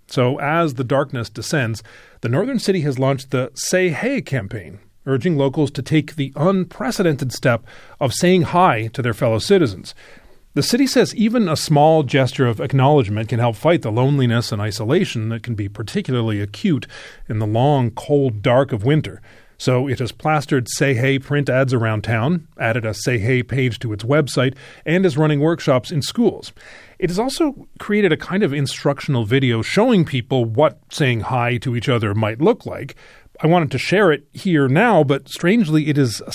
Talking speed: 185 wpm